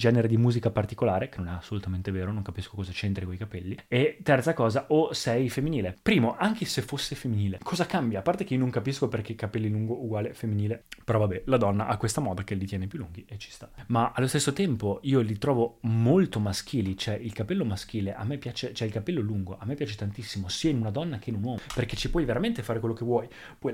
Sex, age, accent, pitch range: male, 20-39, native, 105-135 Hz